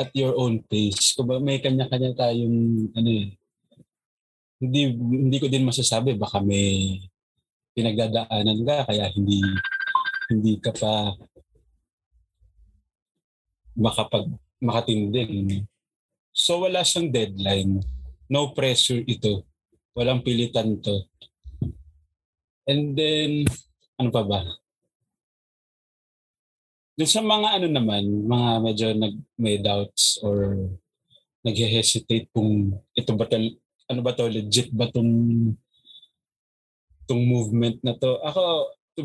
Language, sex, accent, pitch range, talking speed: Filipino, male, native, 100-130 Hz, 100 wpm